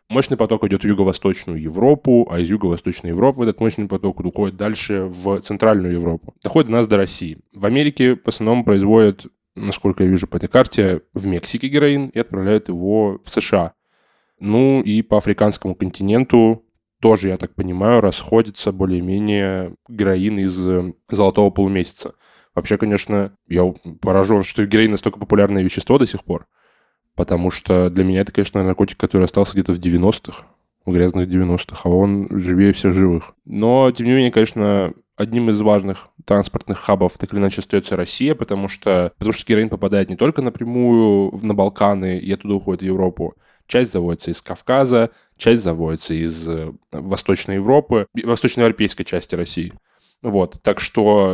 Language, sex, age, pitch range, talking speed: Russian, male, 10-29, 95-110 Hz, 160 wpm